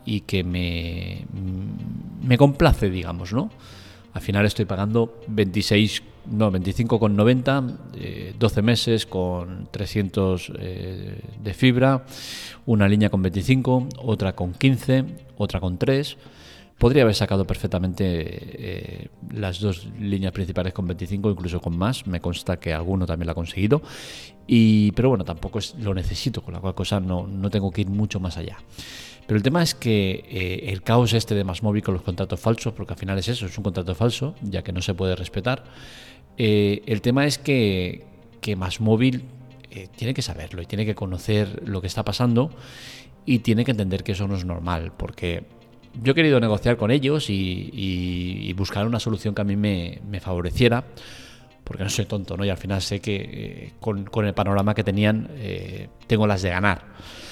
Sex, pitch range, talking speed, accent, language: male, 95-120 Hz, 180 wpm, Spanish, Spanish